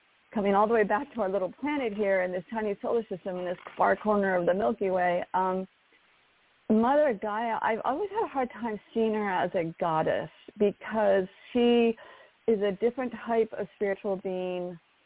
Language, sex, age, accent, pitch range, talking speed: English, female, 40-59, American, 180-225 Hz, 185 wpm